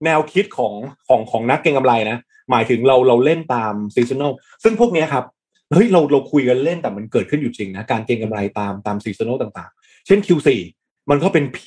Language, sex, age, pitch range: Thai, male, 20-39, 115-160 Hz